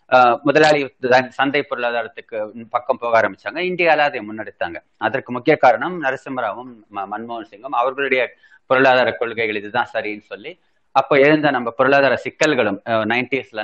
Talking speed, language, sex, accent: 120 wpm, Tamil, male, native